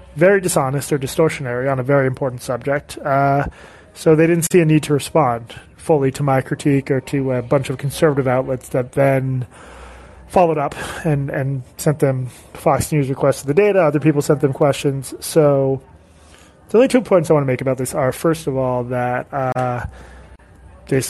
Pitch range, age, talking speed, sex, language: 130-150 Hz, 20-39, 190 wpm, male, English